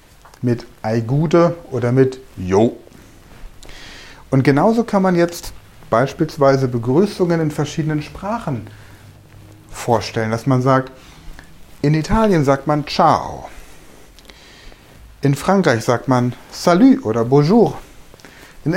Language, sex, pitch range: German, male, 115-170 Hz